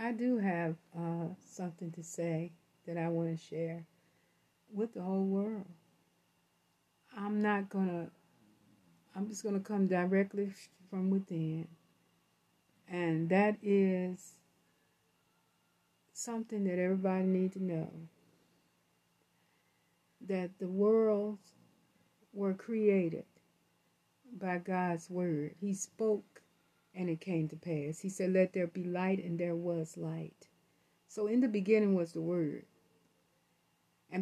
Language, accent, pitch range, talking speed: English, American, 170-205 Hz, 125 wpm